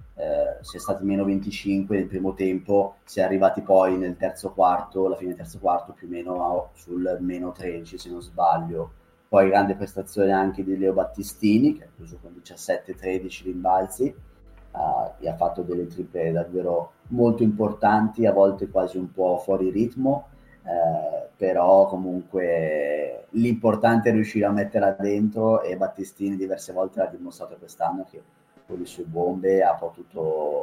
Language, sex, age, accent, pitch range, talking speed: Italian, male, 30-49, native, 90-105 Hz, 160 wpm